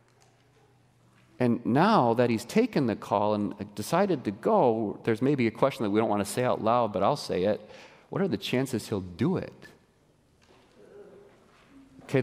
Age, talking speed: 40-59, 170 wpm